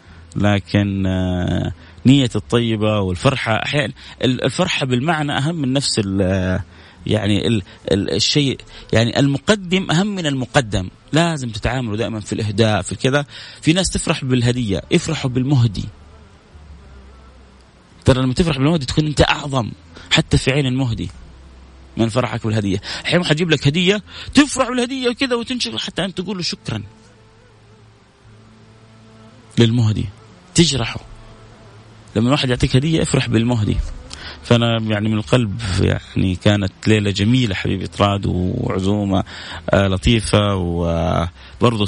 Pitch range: 95-130 Hz